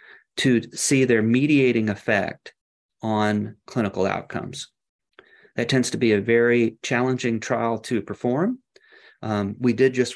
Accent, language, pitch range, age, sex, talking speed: American, English, 110-130 Hz, 40-59, male, 130 wpm